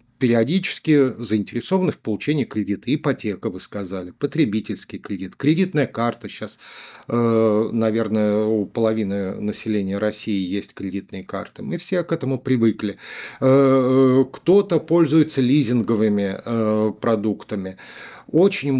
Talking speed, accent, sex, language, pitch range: 100 wpm, native, male, Russian, 110-140 Hz